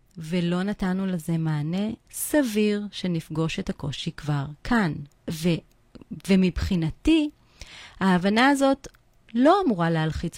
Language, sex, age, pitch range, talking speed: Hebrew, female, 30-49, 165-215 Hz, 100 wpm